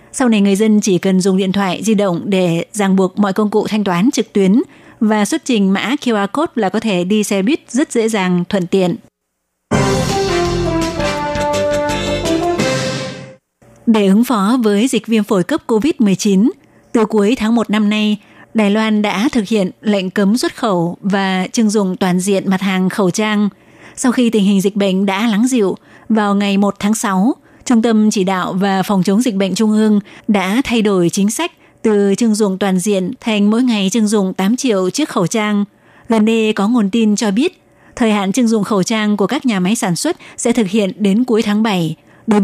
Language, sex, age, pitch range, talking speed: Vietnamese, female, 20-39, 195-225 Hz, 200 wpm